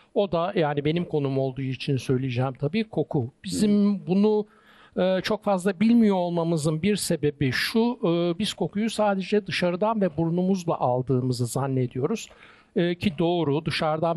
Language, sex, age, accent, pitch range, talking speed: Turkish, male, 60-79, native, 140-180 Hz, 125 wpm